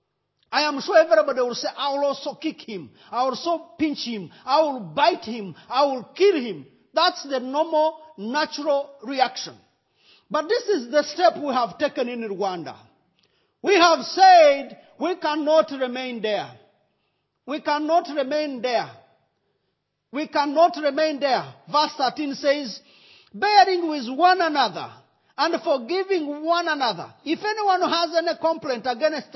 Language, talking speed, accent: English, 145 wpm, South African